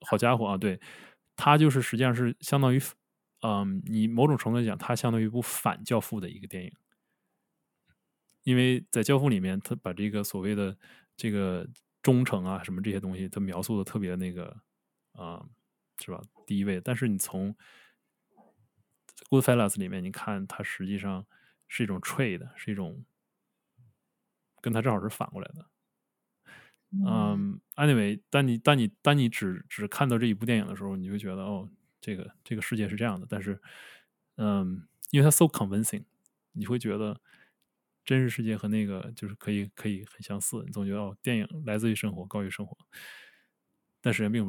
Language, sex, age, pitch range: English, male, 20-39, 100-130 Hz